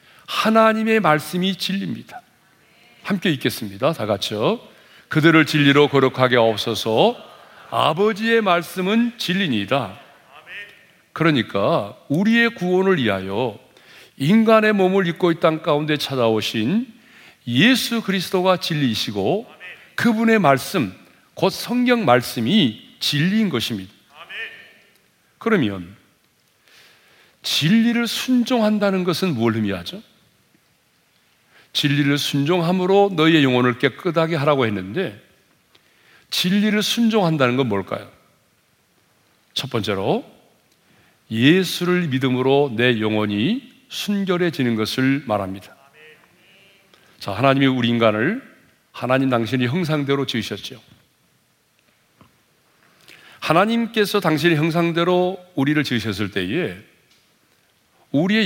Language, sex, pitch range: Korean, male, 130-200 Hz